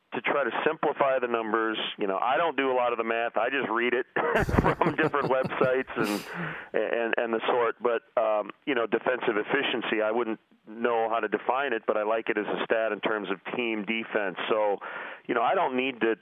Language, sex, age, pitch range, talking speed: English, male, 40-59, 110-120 Hz, 220 wpm